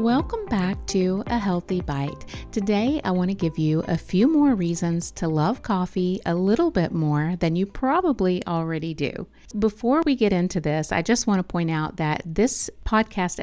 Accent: American